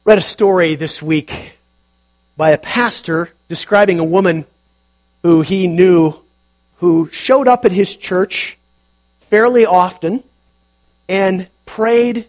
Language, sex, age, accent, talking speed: English, male, 40-59, American, 115 wpm